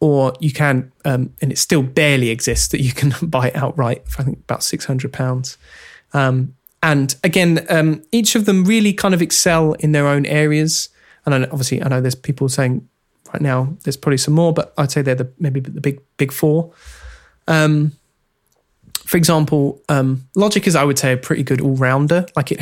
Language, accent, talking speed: English, British, 190 wpm